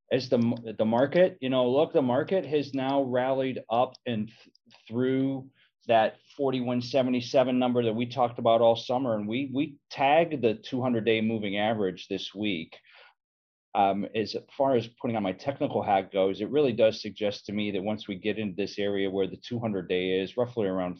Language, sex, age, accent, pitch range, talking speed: English, male, 40-59, American, 105-125 Hz, 190 wpm